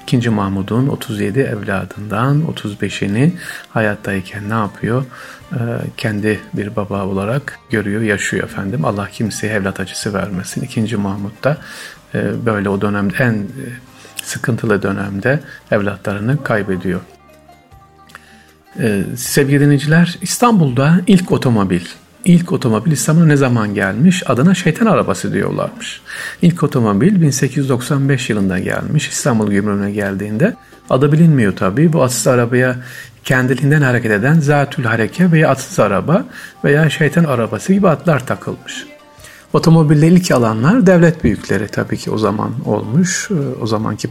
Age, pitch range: 50-69, 105-150 Hz